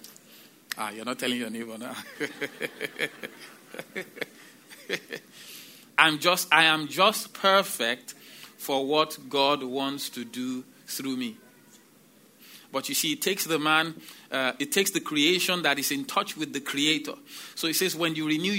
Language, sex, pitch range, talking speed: English, male, 160-220 Hz, 140 wpm